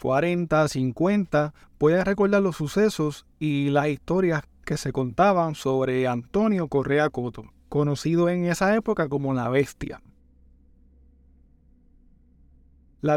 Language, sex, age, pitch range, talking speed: Spanish, male, 30-49, 135-170 Hz, 110 wpm